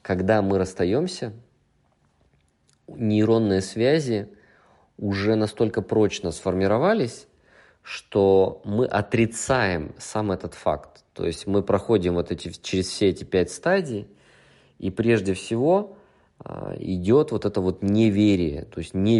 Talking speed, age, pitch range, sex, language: 110 wpm, 20-39, 90-110 Hz, male, Russian